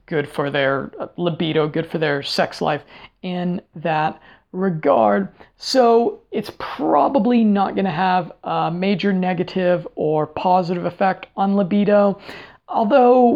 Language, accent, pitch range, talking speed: English, American, 170-210 Hz, 125 wpm